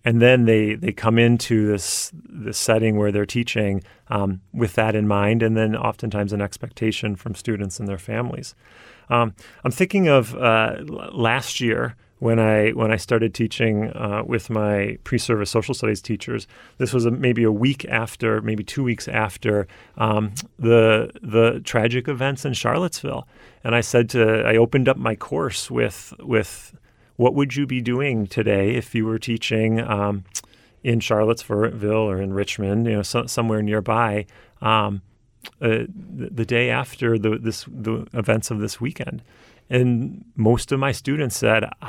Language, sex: English, male